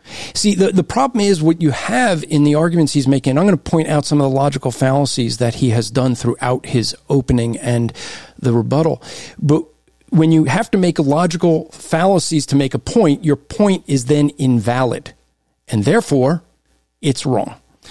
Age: 50-69